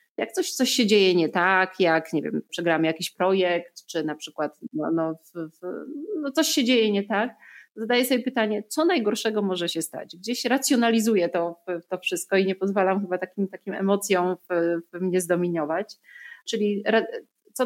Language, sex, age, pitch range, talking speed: Polish, female, 30-49, 175-225 Hz, 170 wpm